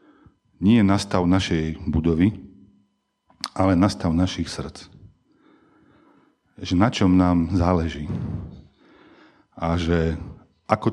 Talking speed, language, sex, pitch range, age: 90 wpm, Slovak, male, 85-100 Hz, 40-59